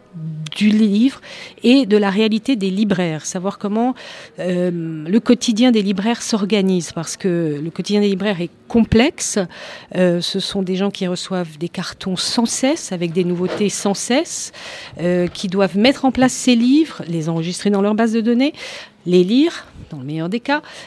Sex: female